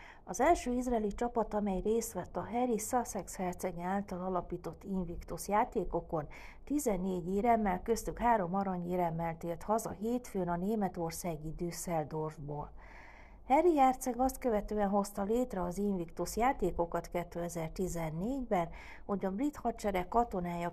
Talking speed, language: 120 wpm, Hungarian